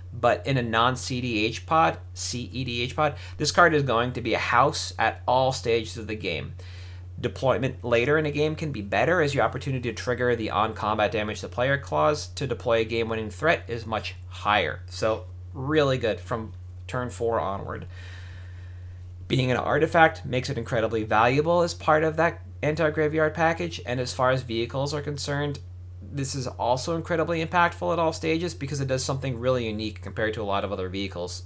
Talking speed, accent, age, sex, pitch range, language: 185 wpm, American, 30-49, male, 90-130 Hz, English